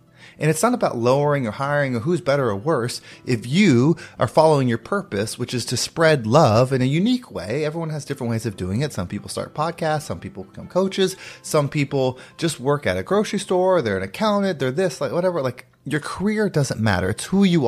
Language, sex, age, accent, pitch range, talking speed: English, male, 30-49, American, 120-175 Hz, 220 wpm